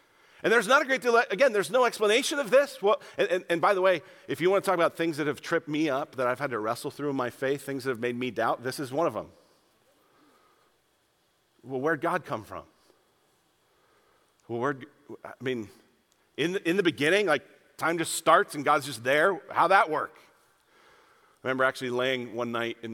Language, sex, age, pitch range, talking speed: English, male, 40-59, 125-190 Hz, 215 wpm